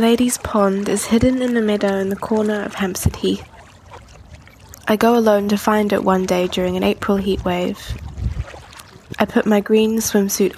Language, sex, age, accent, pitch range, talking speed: English, female, 10-29, British, 185-210 Hz, 175 wpm